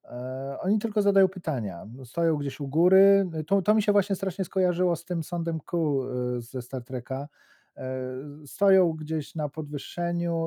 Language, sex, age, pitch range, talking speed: Polish, male, 40-59, 120-145 Hz, 150 wpm